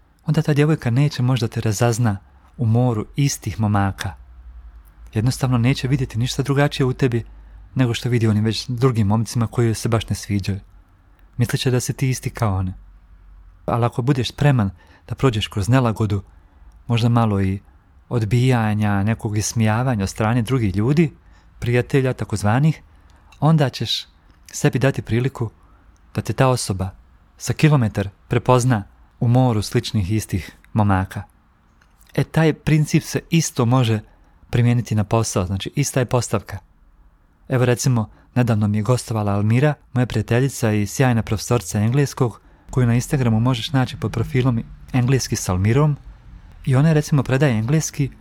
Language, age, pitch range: Croatian, 40-59, 100-130 Hz